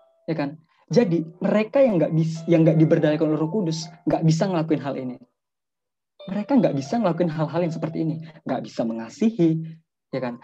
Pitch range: 145-180 Hz